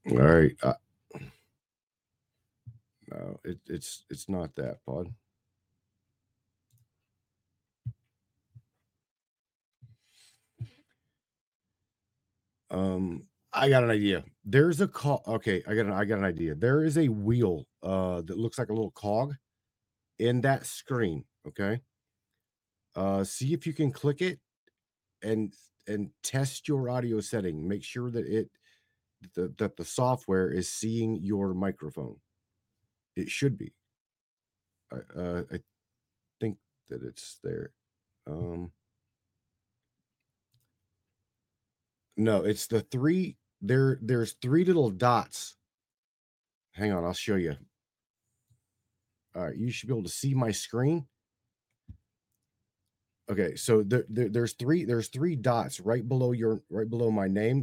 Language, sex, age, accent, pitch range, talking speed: English, male, 50-69, American, 100-125 Hz, 120 wpm